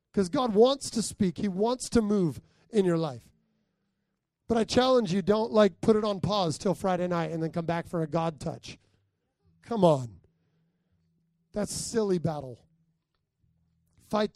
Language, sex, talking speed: English, male, 165 wpm